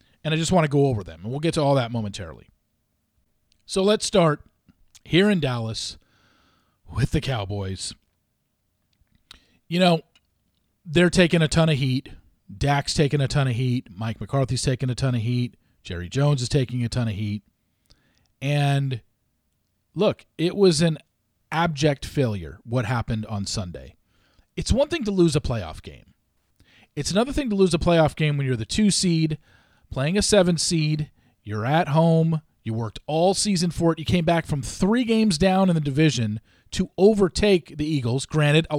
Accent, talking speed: American, 175 wpm